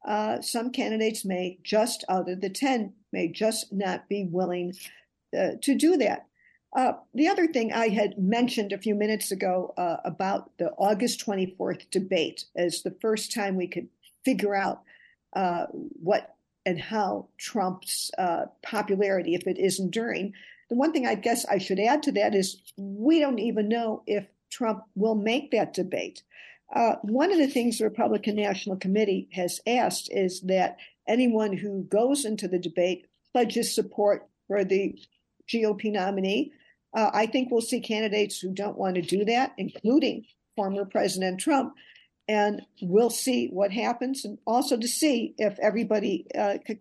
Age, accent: 50-69, American